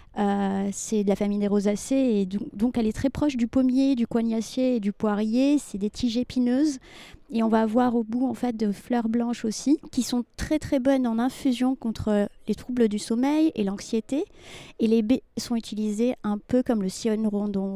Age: 30-49